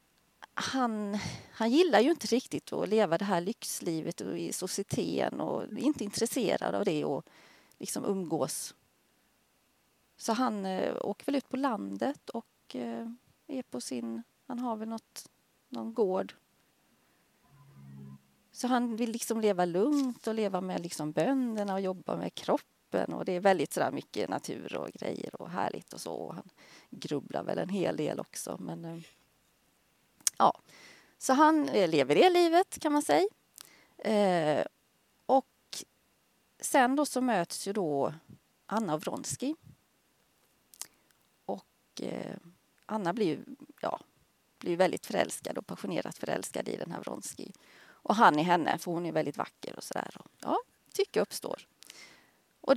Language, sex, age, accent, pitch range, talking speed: Swedish, female, 30-49, native, 170-260 Hz, 145 wpm